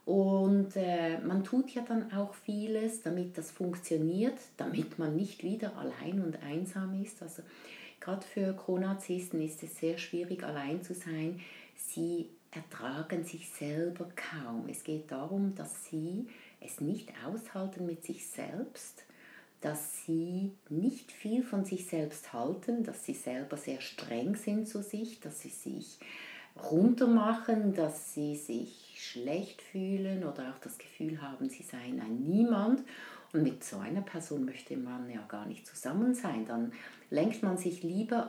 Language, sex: German, female